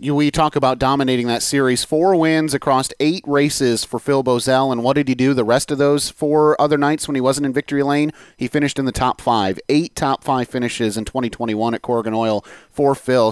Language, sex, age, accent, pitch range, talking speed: English, male, 30-49, American, 125-155 Hz, 220 wpm